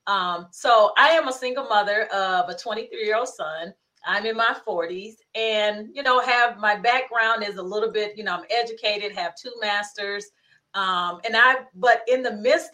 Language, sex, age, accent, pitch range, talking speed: English, female, 30-49, American, 195-255 Hz, 195 wpm